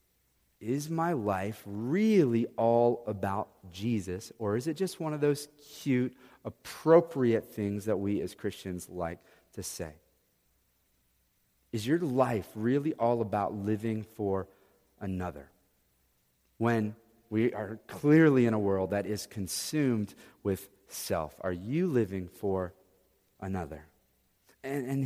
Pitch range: 100-125 Hz